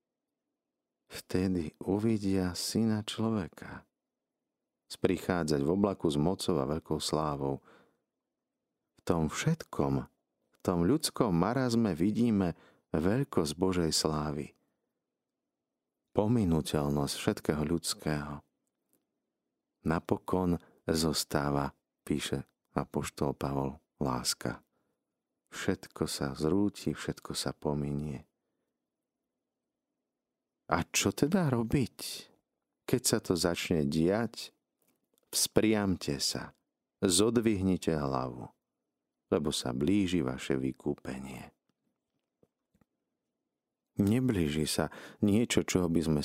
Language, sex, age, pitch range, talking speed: Slovak, male, 50-69, 75-105 Hz, 80 wpm